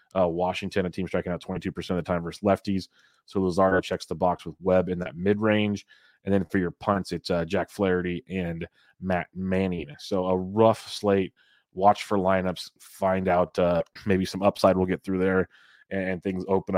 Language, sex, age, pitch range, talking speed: English, male, 30-49, 90-100 Hz, 195 wpm